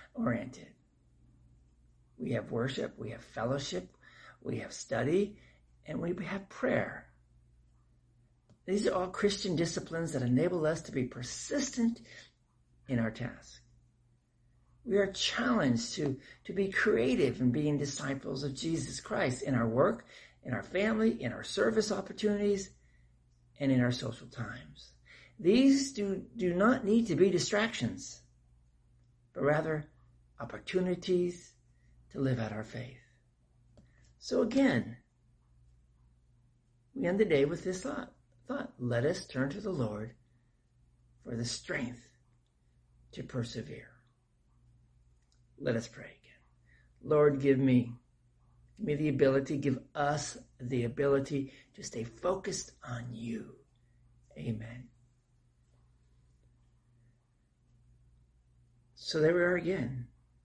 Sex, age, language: male, 50-69, English